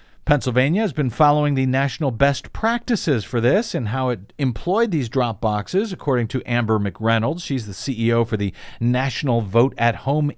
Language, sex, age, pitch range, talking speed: English, male, 50-69, 115-150 Hz, 175 wpm